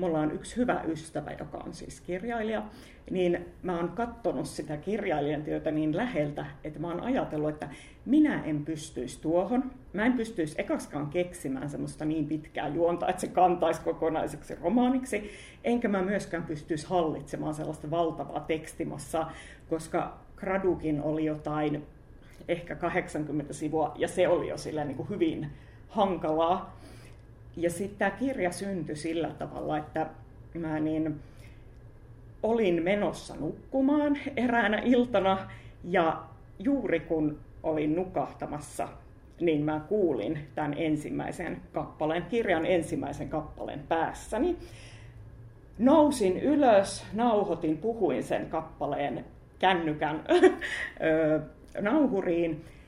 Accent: native